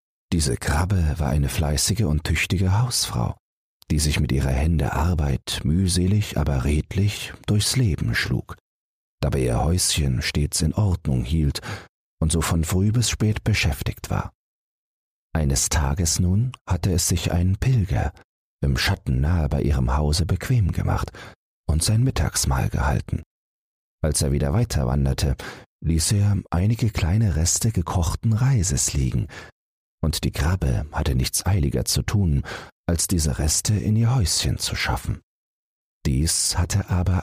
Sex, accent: male, German